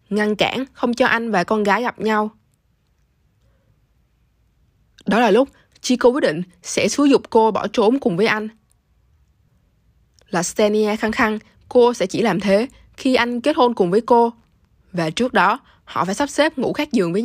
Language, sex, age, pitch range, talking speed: Vietnamese, female, 20-39, 185-230 Hz, 180 wpm